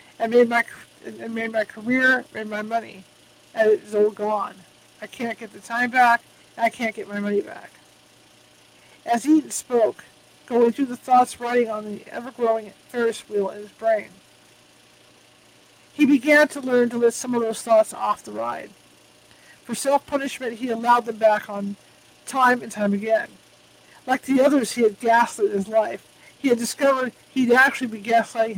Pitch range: 220-260 Hz